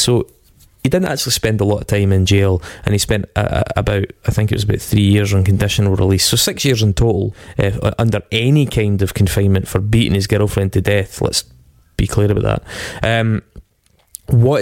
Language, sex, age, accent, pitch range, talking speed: English, male, 20-39, British, 105-120 Hz, 200 wpm